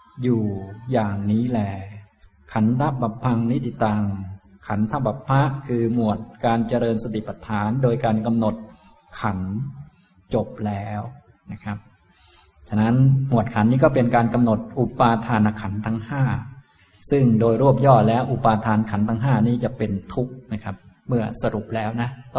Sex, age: male, 20-39